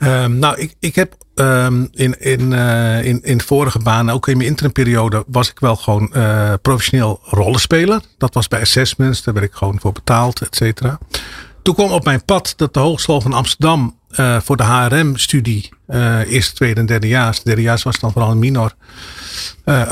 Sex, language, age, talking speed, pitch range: male, Dutch, 40-59, 180 wpm, 115-150 Hz